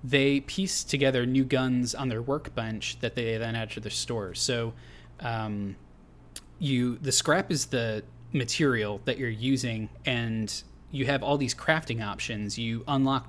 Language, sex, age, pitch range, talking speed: English, male, 20-39, 110-130 Hz, 160 wpm